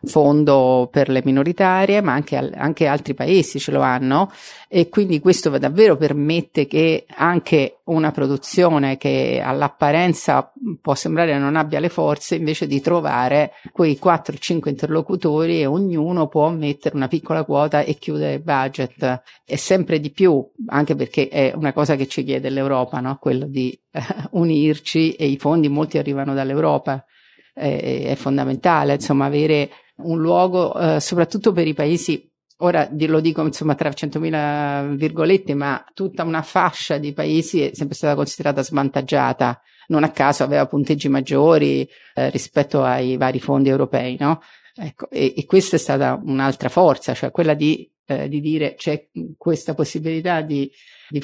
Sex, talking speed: female, 150 wpm